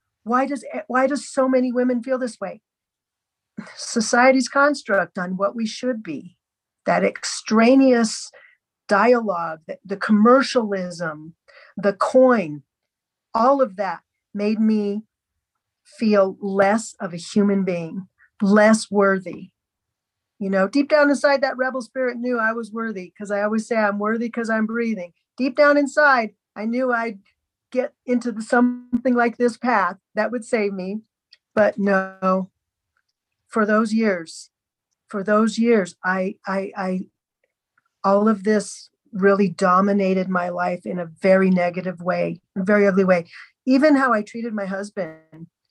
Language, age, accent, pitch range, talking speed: English, 50-69, American, 195-245 Hz, 140 wpm